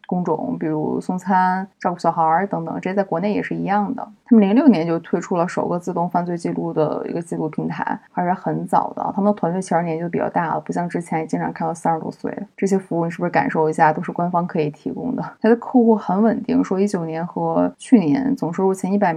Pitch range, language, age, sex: 165-205 Hz, Chinese, 20-39, female